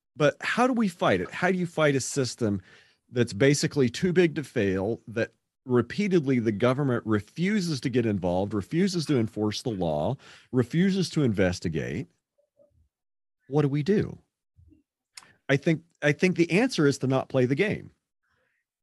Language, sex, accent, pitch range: English, male, American, 100-145 Hz